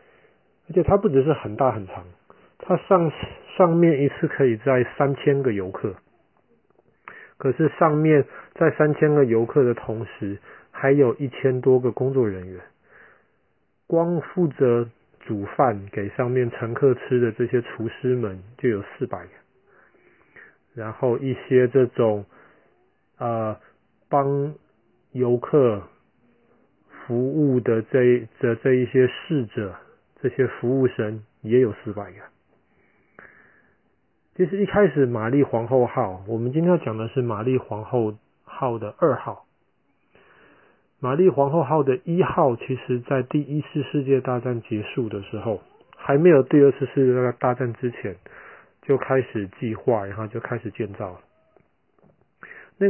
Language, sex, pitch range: Chinese, male, 115-145 Hz